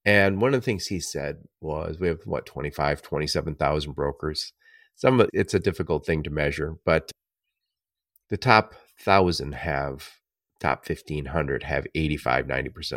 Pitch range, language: 80-105 Hz, English